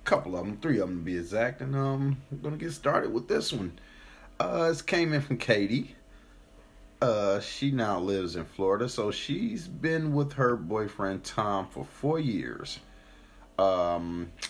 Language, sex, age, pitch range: English, male, 30-49, 85-120 Hz